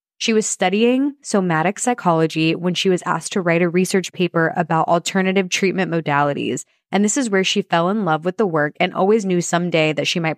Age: 20-39